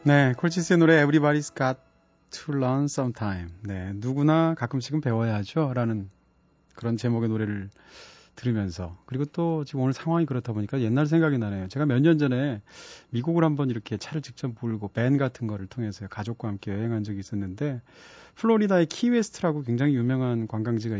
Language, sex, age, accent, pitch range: Korean, male, 30-49, native, 115-155 Hz